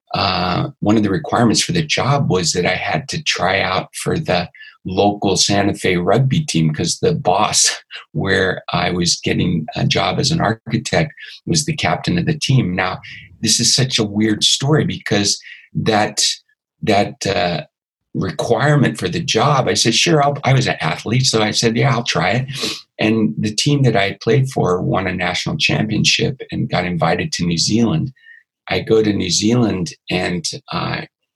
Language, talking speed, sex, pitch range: English, 180 wpm, male, 100-145 Hz